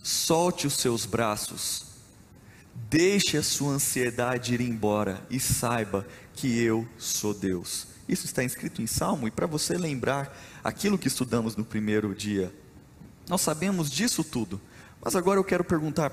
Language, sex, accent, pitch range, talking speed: Portuguese, male, Brazilian, 120-170 Hz, 150 wpm